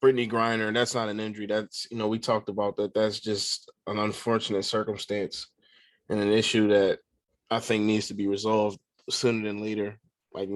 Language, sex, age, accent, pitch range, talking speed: English, male, 20-39, American, 105-135 Hz, 190 wpm